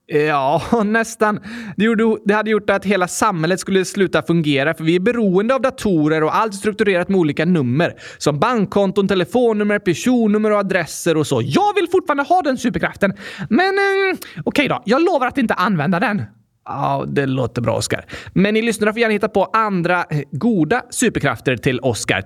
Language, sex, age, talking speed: Swedish, male, 20-39, 175 wpm